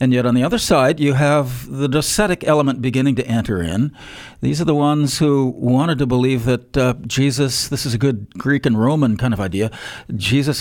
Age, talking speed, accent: 50-69, 210 wpm, American